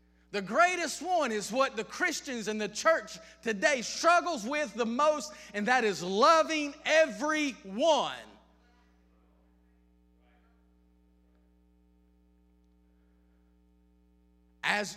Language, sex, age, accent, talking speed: English, male, 30-49, American, 85 wpm